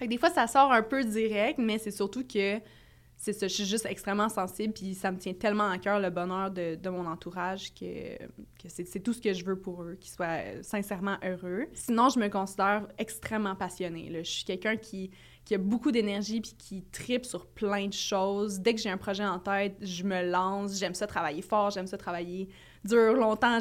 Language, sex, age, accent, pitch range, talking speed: French, female, 20-39, Canadian, 180-210 Hz, 225 wpm